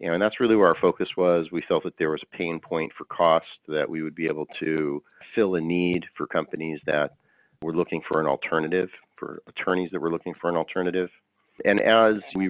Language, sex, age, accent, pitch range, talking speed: English, male, 40-59, American, 80-90 Hz, 215 wpm